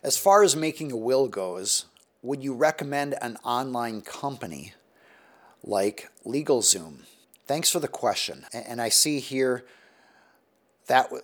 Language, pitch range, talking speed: English, 105-145 Hz, 130 wpm